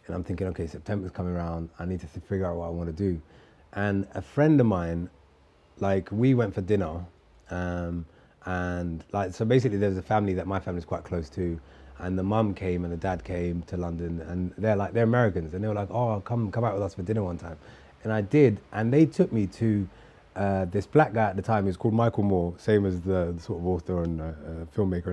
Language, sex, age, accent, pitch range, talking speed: English, male, 30-49, British, 90-110 Hz, 245 wpm